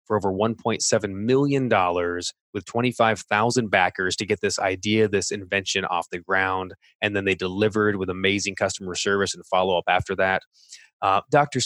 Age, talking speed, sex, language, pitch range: 20-39, 155 wpm, male, English, 100-125 Hz